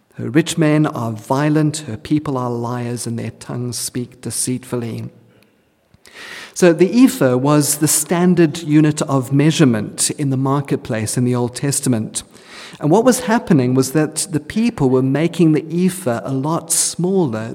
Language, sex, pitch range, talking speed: English, male, 130-170 Hz, 155 wpm